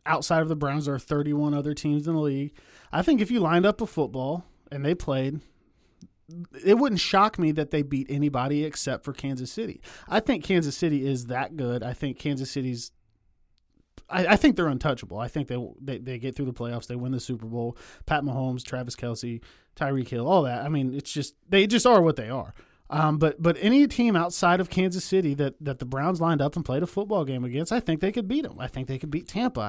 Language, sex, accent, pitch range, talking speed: English, male, American, 135-180 Hz, 240 wpm